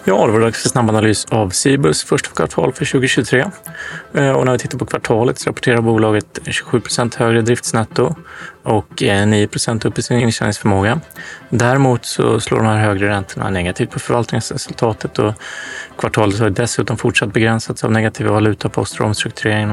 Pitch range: 105-130 Hz